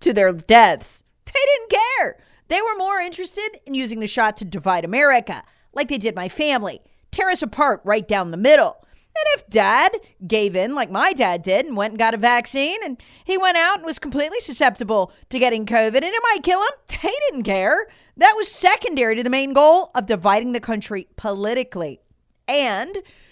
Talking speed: 195 wpm